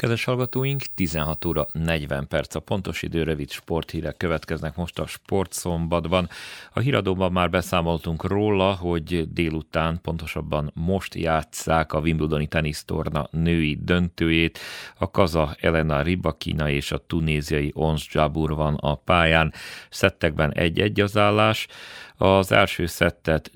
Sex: male